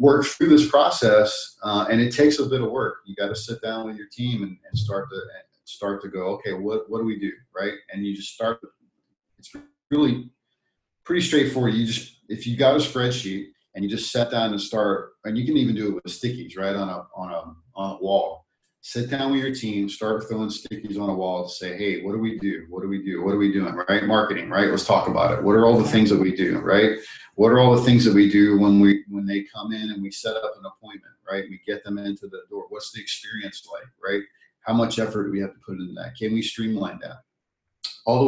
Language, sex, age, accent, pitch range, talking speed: English, male, 40-59, American, 100-120 Hz, 255 wpm